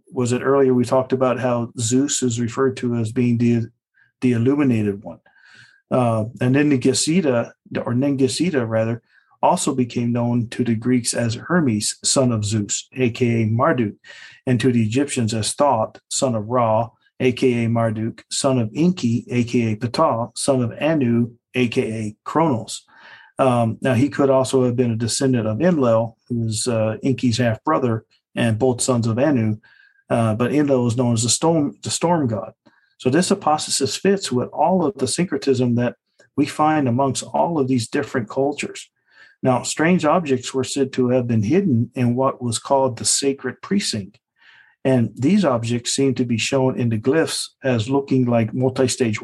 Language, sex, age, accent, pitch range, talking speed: English, male, 40-59, American, 115-135 Hz, 170 wpm